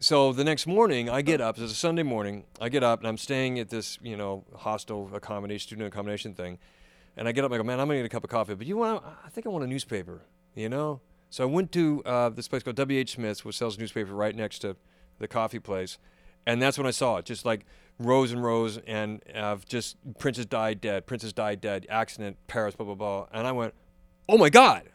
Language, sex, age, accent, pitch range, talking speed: English, male, 40-59, American, 110-145 Hz, 245 wpm